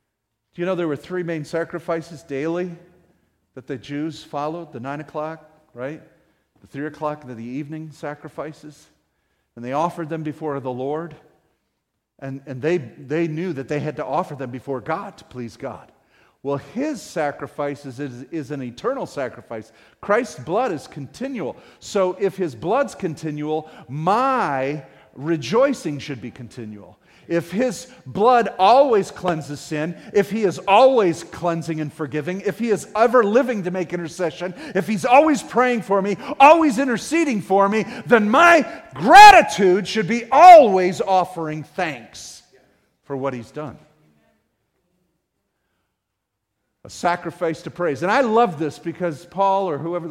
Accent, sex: American, male